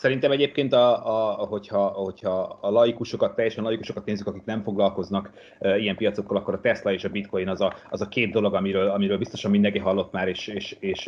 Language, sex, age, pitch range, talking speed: Hungarian, male, 30-49, 100-130 Hz, 205 wpm